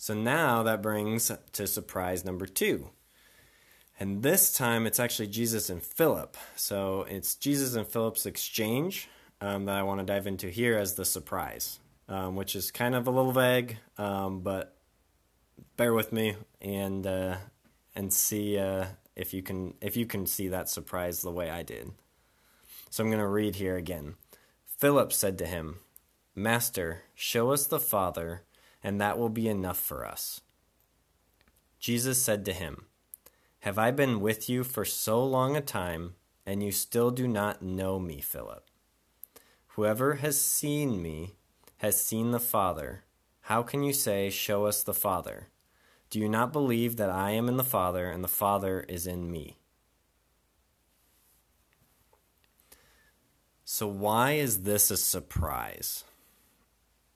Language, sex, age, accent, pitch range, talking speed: English, male, 20-39, American, 95-115 Hz, 155 wpm